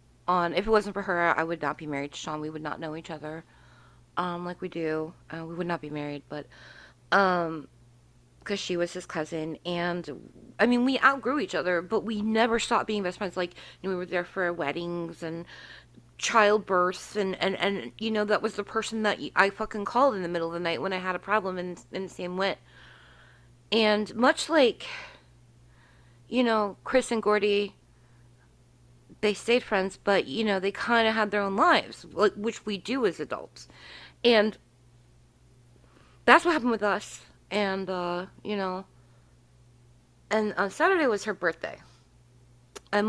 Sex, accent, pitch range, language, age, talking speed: female, American, 150-210 Hz, English, 30-49, 185 wpm